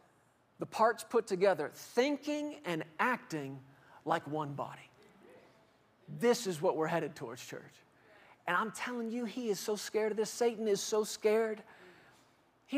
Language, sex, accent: English, male, American